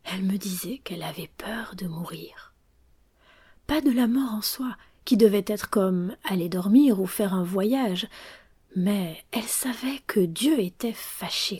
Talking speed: 160 wpm